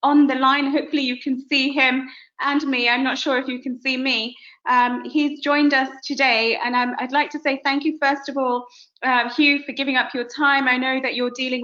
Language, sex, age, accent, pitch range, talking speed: English, female, 20-39, British, 245-300 Hz, 235 wpm